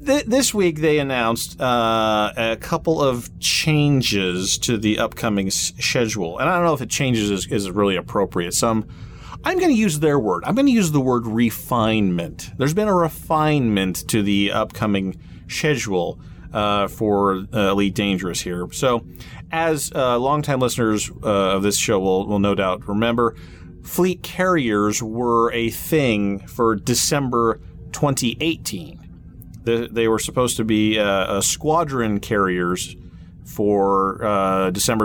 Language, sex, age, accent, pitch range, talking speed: English, male, 30-49, American, 100-130 Hz, 150 wpm